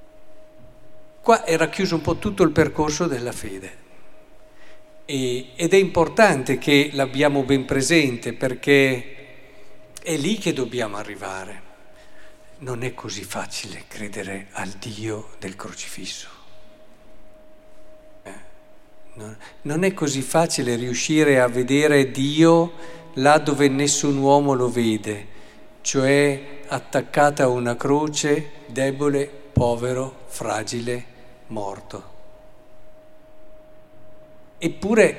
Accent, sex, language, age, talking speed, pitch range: native, male, Italian, 50-69, 95 wpm, 120-160 Hz